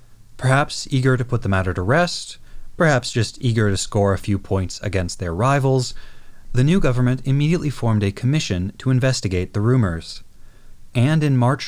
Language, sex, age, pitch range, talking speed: English, male, 30-49, 100-135 Hz, 170 wpm